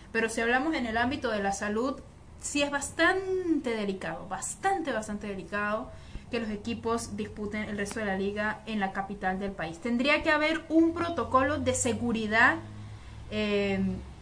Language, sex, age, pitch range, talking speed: Spanish, female, 30-49, 200-280 Hz, 160 wpm